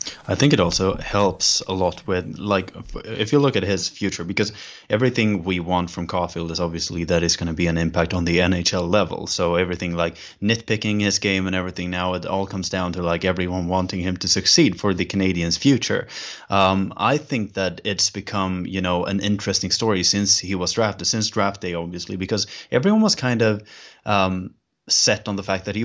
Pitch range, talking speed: 90-105 Hz, 205 wpm